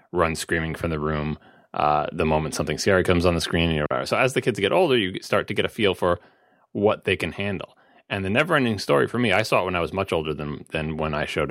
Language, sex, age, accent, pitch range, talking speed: English, male, 30-49, American, 80-105 Hz, 270 wpm